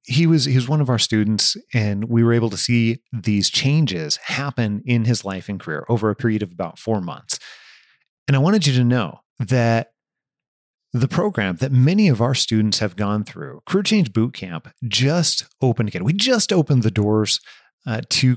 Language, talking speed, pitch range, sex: English, 190 wpm, 110-145 Hz, male